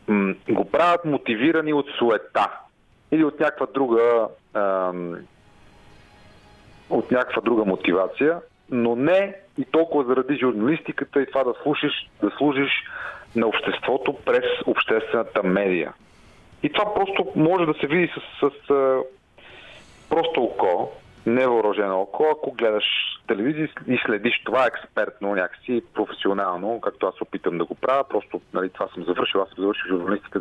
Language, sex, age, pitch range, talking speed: Bulgarian, male, 40-59, 105-150 Hz, 140 wpm